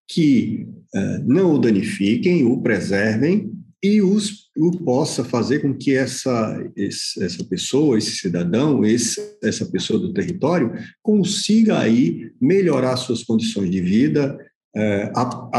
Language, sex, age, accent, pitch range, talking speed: English, male, 50-69, Brazilian, 110-155 Hz, 115 wpm